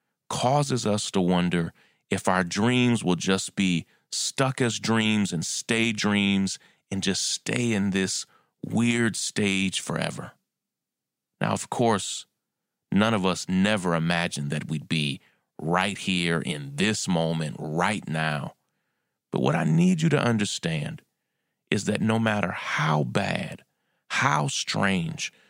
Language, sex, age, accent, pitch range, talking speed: English, male, 30-49, American, 85-110 Hz, 135 wpm